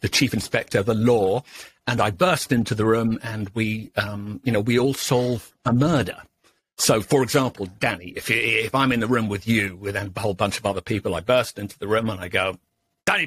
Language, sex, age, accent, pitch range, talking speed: English, male, 50-69, British, 105-135 Hz, 220 wpm